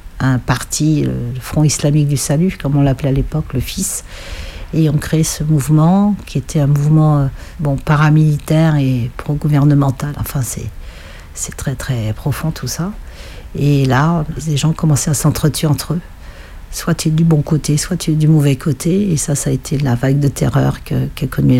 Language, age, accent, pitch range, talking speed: French, 60-79, French, 125-155 Hz, 190 wpm